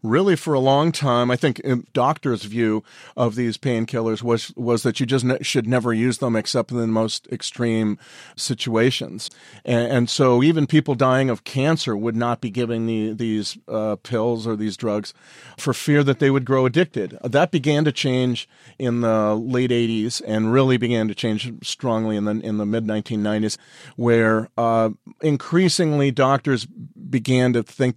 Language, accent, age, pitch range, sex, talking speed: English, American, 40-59, 115-135 Hz, male, 170 wpm